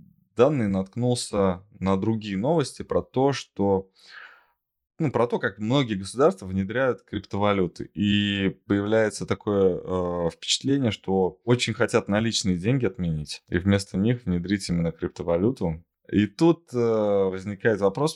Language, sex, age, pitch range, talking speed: Russian, male, 20-39, 95-115 Hz, 115 wpm